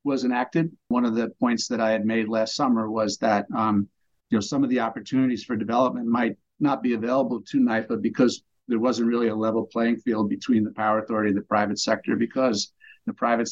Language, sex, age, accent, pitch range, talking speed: English, male, 50-69, American, 110-120 Hz, 215 wpm